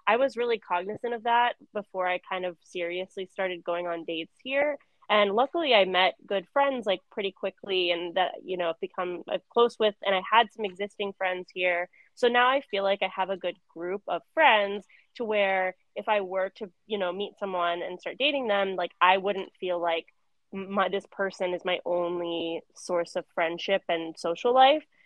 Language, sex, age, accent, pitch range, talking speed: English, female, 20-39, American, 180-210 Hz, 200 wpm